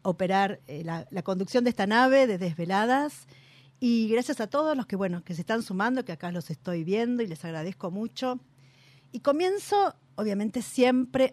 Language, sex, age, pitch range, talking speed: Spanish, female, 40-59, 160-245 Hz, 180 wpm